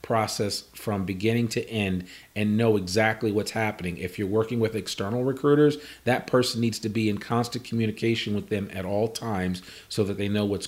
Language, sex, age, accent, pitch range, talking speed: English, male, 40-59, American, 95-120 Hz, 190 wpm